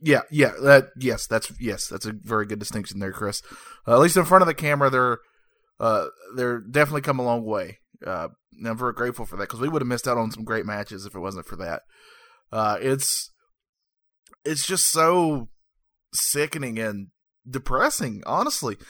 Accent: American